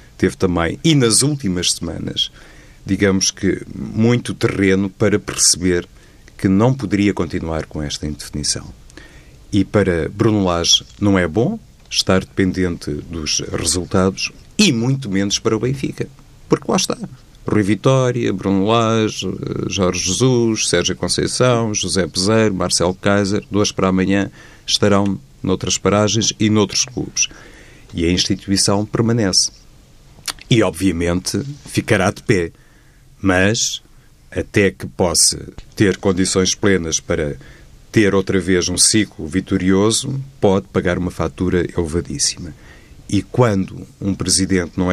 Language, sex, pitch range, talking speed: Portuguese, male, 90-110 Hz, 125 wpm